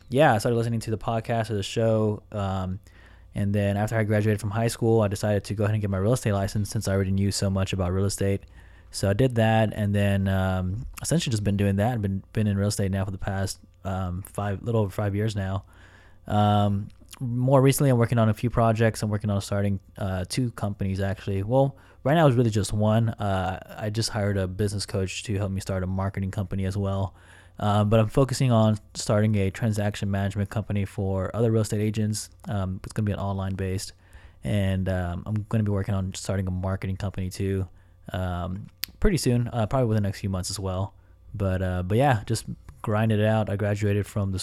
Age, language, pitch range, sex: 20-39, English, 95-110 Hz, male